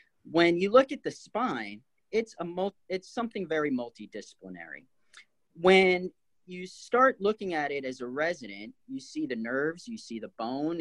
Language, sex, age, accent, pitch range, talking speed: English, male, 40-59, American, 125-190 Hz, 165 wpm